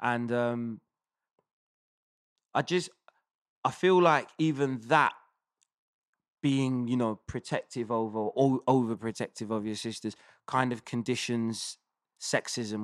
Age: 20-39